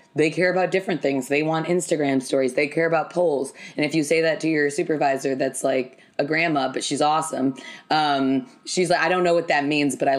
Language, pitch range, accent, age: English, 130-160 Hz, American, 20-39